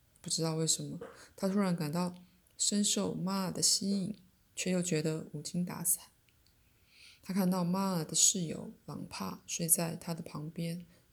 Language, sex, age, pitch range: Chinese, female, 20-39, 160-185 Hz